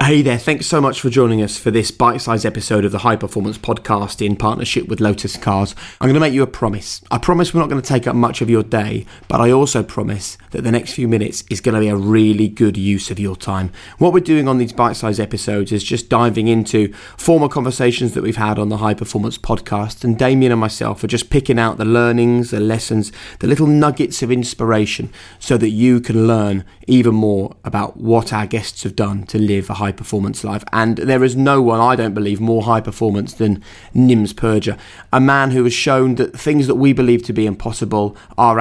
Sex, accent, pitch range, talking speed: male, British, 105-120 Hz, 230 wpm